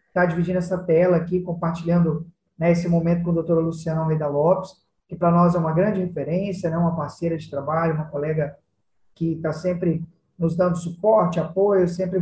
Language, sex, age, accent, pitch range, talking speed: Portuguese, male, 20-39, Brazilian, 160-195 Hz, 180 wpm